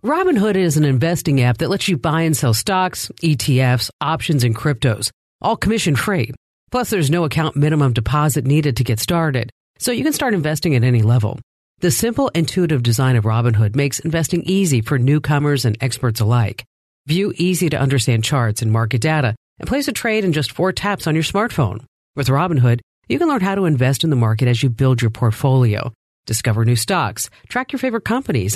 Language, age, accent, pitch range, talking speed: English, 50-69, American, 120-170 Hz, 190 wpm